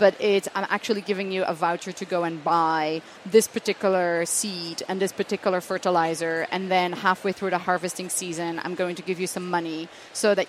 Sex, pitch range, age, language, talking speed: female, 175-205 Hz, 30-49, English, 200 wpm